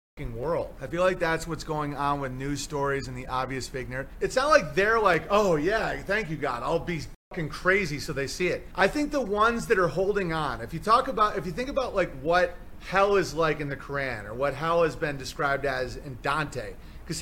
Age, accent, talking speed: 30-49, American, 235 wpm